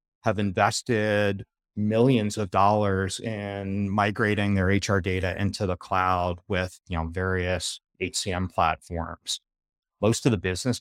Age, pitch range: 30-49, 95-125 Hz